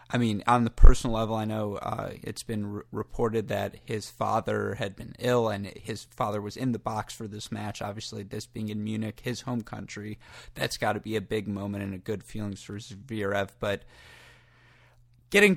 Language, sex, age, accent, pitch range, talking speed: English, male, 20-39, American, 105-125 Hz, 195 wpm